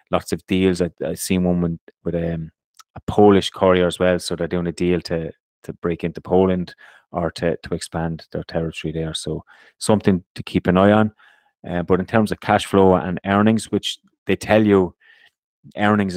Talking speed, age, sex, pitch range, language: 195 wpm, 30-49, male, 85-100 Hz, English